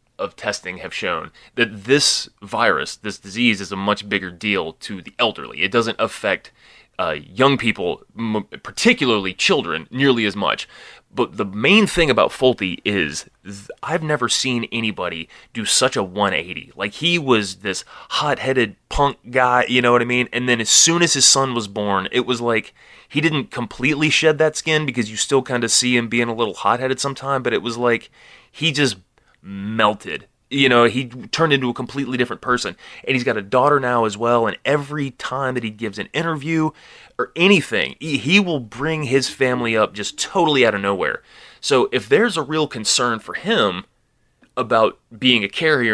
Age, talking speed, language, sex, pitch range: 20-39, 190 wpm, English, male, 110-150 Hz